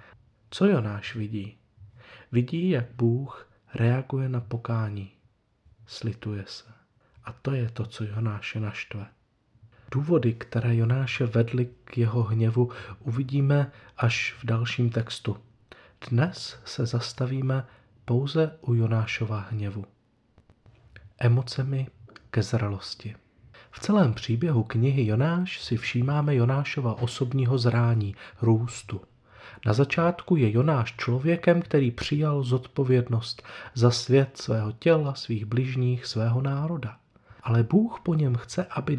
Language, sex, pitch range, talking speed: Czech, male, 110-135 Hz, 110 wpm